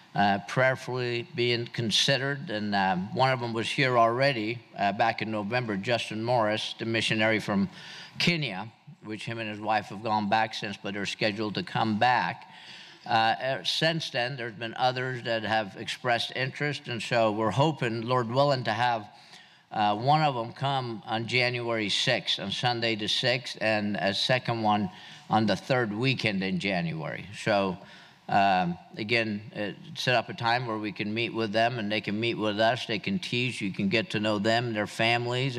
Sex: male